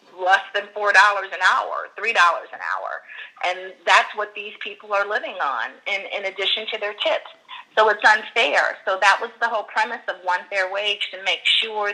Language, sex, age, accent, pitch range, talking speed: English, female, 40-59, American, 170-205 Hz, 200 wpm